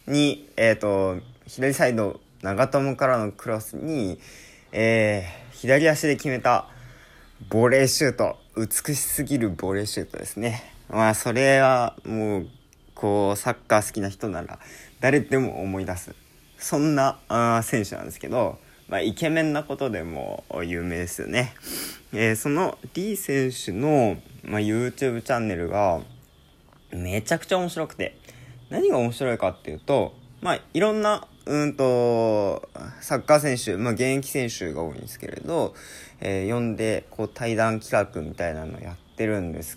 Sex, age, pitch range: male, 20-39, 100-140 Hz